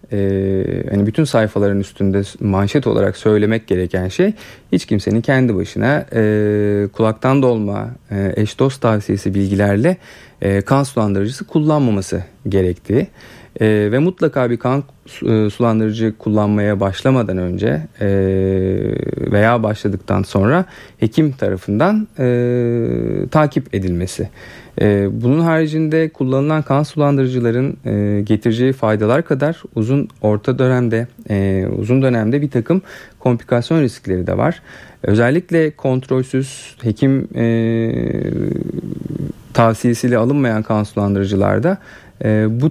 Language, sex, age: Turkish, male, 40-59